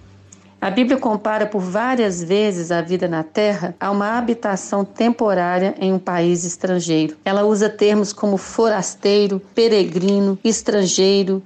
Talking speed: 130 wpm